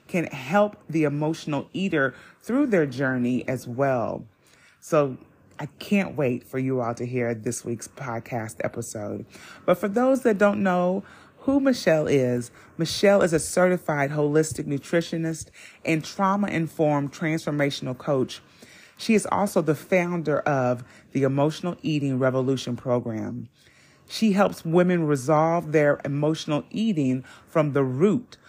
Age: 30-49